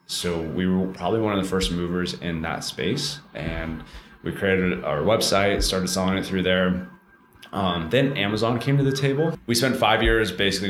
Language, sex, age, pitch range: English, male, 20-39, 80-95 Hz